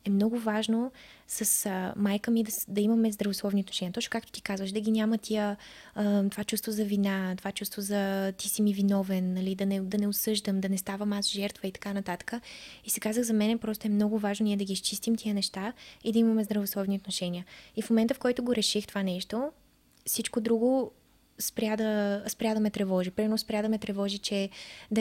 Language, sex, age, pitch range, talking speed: Bulgarian, female, 20-39, 200-230 Hz, 205 wpm